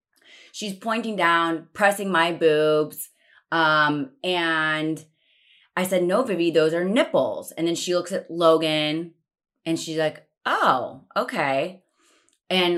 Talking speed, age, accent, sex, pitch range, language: 125 wpm, 30-49, American, female, 145-180 Hz, English